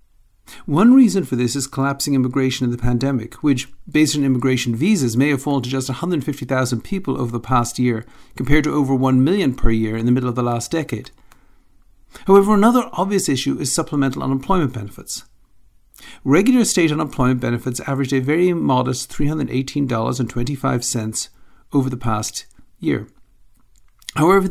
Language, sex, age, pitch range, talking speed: English, male, 50-69, 125-160 Hz, 150 wpm